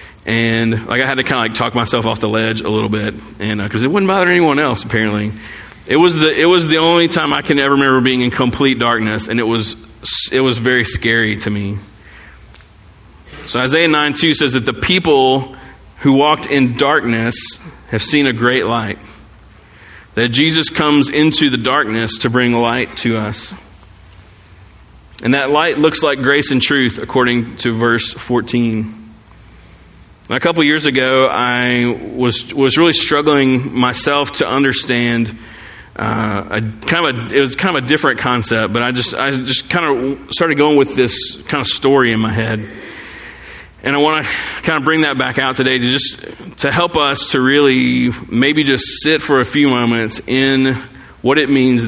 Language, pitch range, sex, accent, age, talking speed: English, 110-140 Hz, male, American, 30-49, 185 wpm